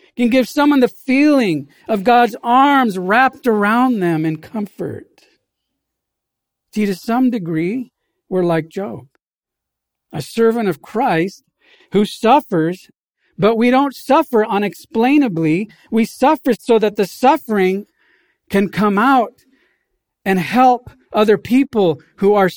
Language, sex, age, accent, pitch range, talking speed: English, male, 50-69, American, 165-235 Hz, 120 wpm